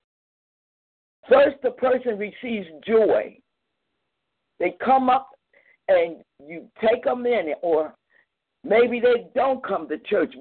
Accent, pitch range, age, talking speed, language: American, 195-270 Hz, 60-79, 115 wpm, English